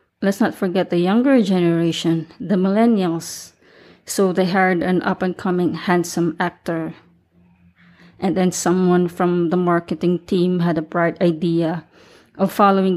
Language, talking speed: English, 130 wpm